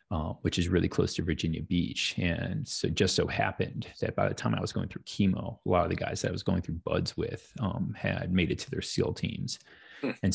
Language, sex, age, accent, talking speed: English, male, 30-49, American, 255 wpm